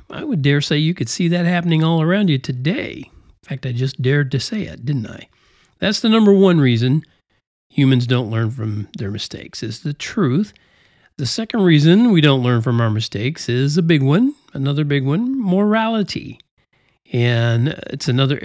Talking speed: 185 wpm